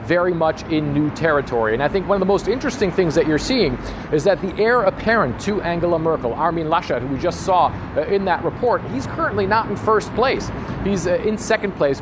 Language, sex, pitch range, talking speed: English, male, 150-195 Hz, 220 wpm